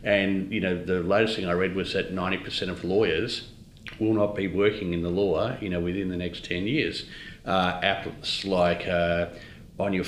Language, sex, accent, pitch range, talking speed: English, male, Australian, 90-105 Hz, 195 wpm